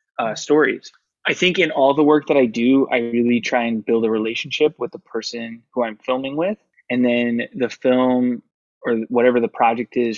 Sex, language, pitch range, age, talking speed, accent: male, English, 115-135 Hz, 20-39, 200 wpm, American